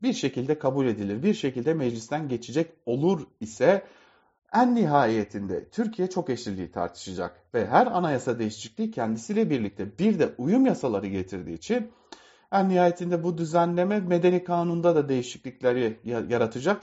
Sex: male